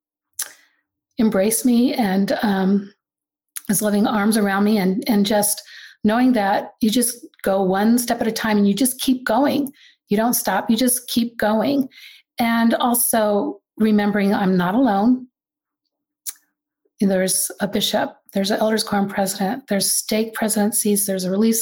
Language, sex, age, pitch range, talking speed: English, female, 40-59, 195-240 Hz, 150 wpm